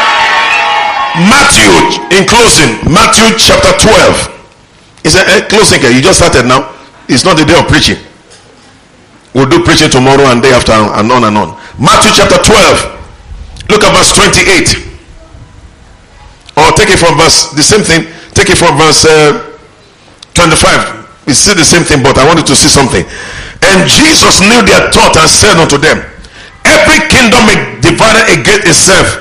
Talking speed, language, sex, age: 155 wpm, English, male, 50-69